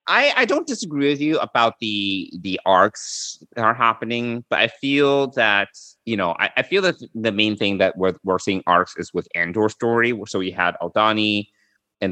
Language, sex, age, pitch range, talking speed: English, male, 30-49, 85-115 Hz, 200 wpm